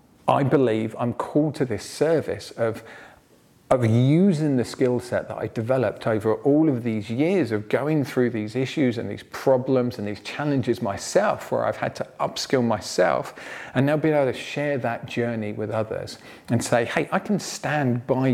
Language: English